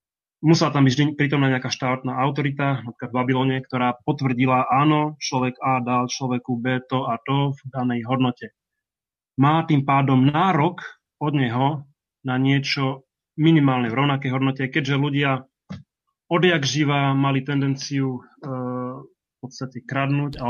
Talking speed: 140 wpm